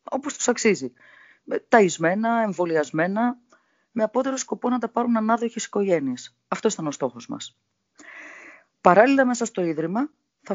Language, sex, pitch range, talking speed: Greek, female, 170-235 Hz, 125 wpm